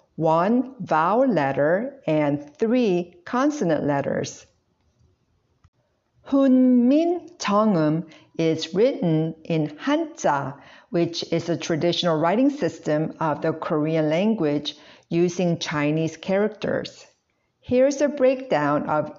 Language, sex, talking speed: English, female, 95 wpm